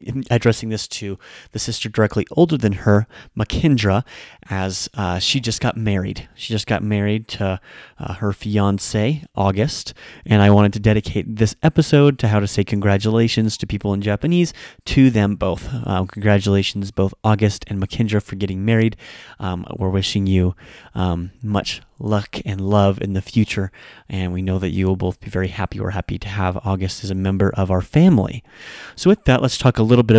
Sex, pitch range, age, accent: male, 100-115 Hz, 30-49, American